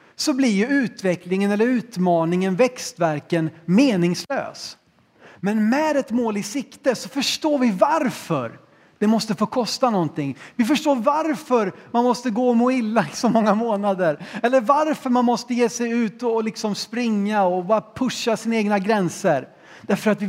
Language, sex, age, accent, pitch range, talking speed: Swedish, male, 30-49, native, 180-240 Hz, 160 wpm